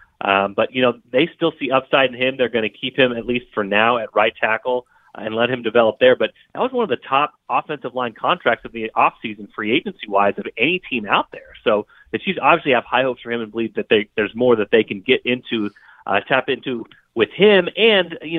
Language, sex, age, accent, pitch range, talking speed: English, male, 30-49, American, 110-150 Hz, 240 wpm